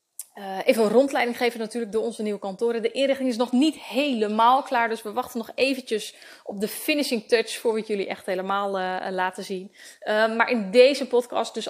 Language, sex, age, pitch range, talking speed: Dutch, female, 20-39, 200-240 Hz, 205 wpm